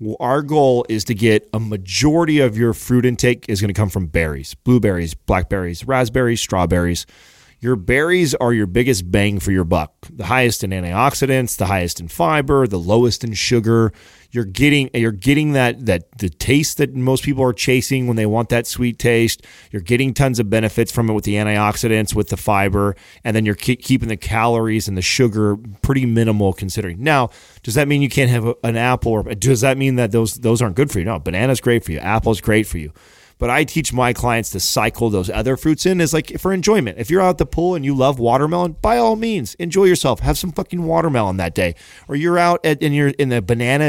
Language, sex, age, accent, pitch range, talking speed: English, male, 30-49, American, 105-140 Hz, 220 wpm